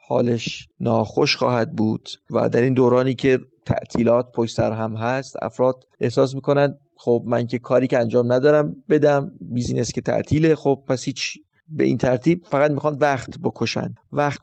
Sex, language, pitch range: male, Persian, 125-150 Hz